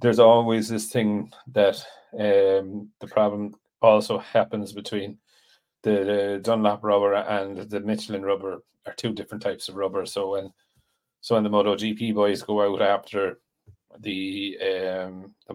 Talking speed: 145 wpm